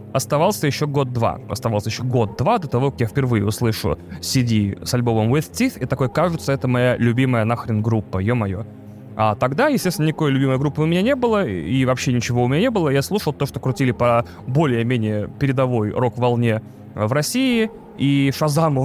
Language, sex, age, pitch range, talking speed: Russian, male, 20-39, 120-160 Hz, 180 wpm